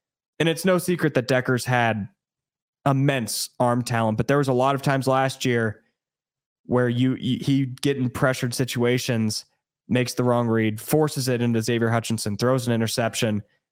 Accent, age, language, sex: American, 20-39, English, male